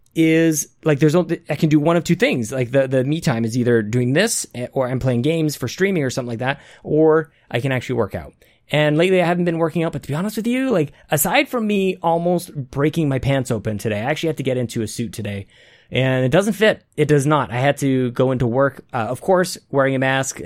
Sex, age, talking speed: male, 20-39, 255 wpm